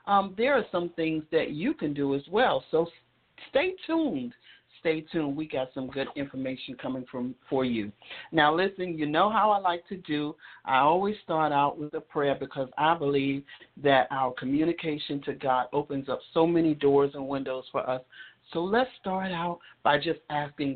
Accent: American